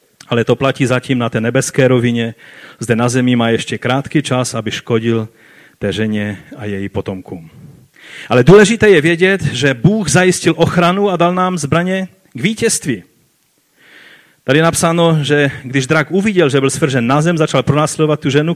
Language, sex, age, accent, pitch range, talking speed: Czech, male, 30-49, native, 130-165 Hz, 170 wpm